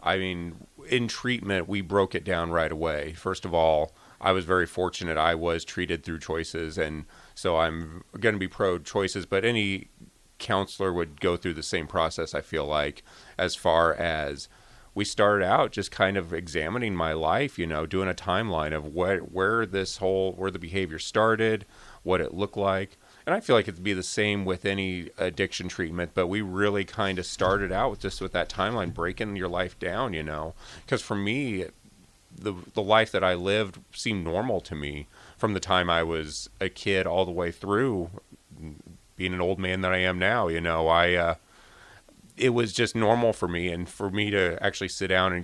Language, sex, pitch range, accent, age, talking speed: English, male, 85-100 Hz, American, 30-49, 200 wpm